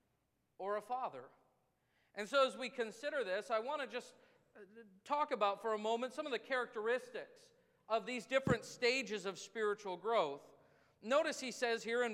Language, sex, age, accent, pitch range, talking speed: English, male, 40-59, American, 200-260 Hz, 170 wpm